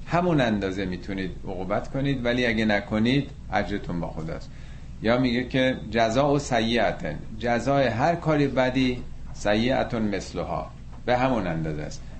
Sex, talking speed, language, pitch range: male, 130 wpm, Persian, 95-120 Hz